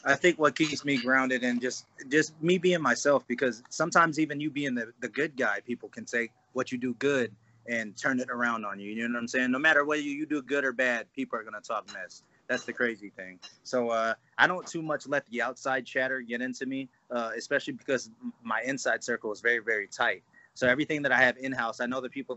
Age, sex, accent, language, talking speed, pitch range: 20-39, male, American, English, 245 wpm, 115-135 Hz